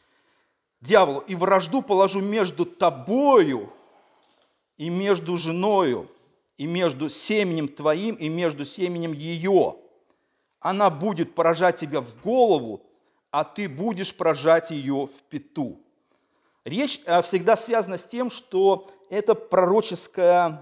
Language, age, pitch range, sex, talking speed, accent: Russian, 50-69, 165-210 Hz, male, 110 wpm, native